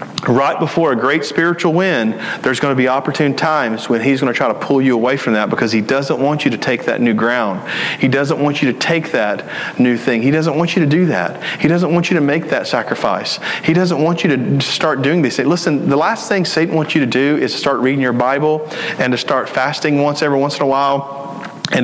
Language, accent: English, American